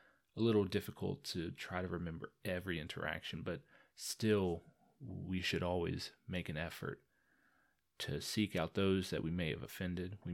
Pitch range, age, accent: 85-95 Hz, 30-49, American